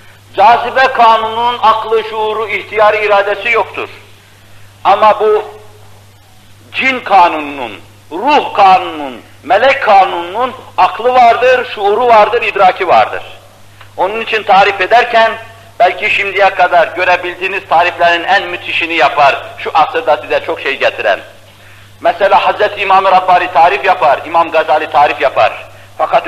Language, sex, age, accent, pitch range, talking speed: Turkish, male, 50-69, native, 135-220 Hz, 115 wpm